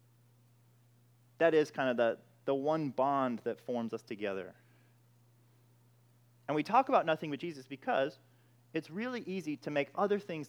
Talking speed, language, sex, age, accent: 155 wpm, English, male, 30-49, American